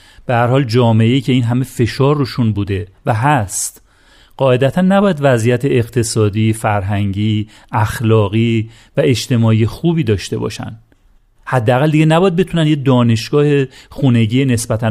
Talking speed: 125 wpm